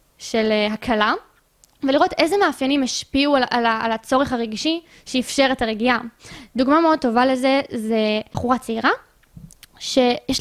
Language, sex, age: Hebrew, female, 20-39